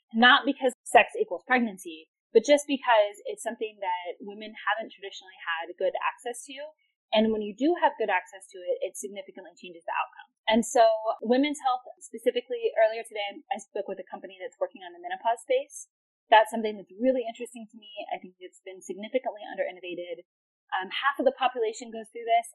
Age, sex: 10-29, female